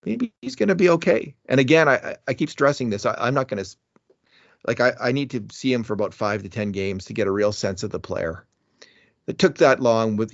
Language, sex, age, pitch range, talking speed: English, male, 40-59, 100-125 Hz, 255 wpm